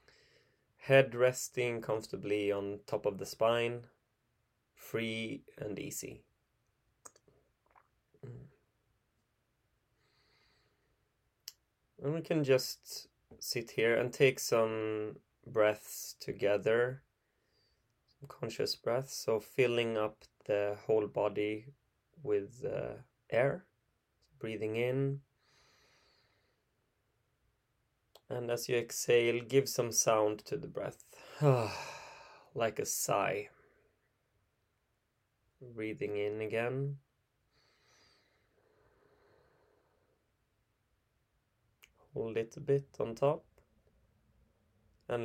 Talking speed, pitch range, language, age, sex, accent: 75 wpm, 110-135 Hz, English, 20-39, male, Swedish